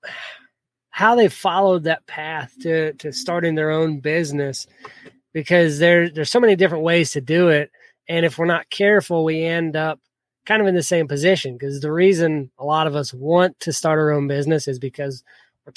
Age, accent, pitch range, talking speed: 20-39, American, 145-175 Hz, 195 wpm